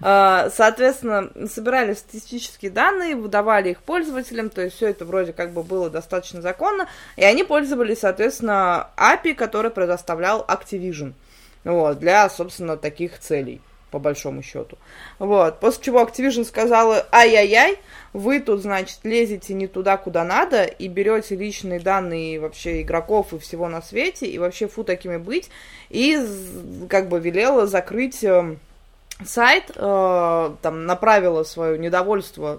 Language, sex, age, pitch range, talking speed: Russian, female, 20-39, 180-230 Hz, 135 wpm